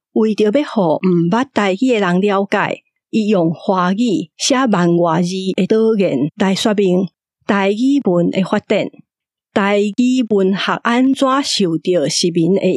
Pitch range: 185-225 Hz